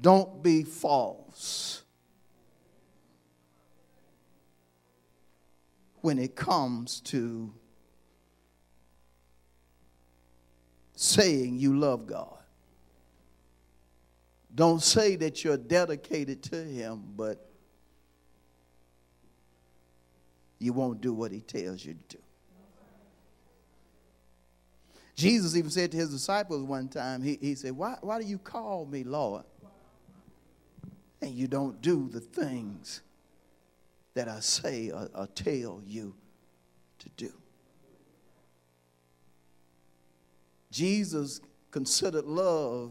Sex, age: male, 50-69